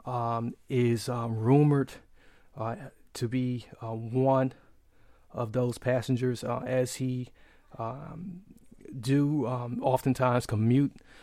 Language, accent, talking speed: English, American, 105 wpm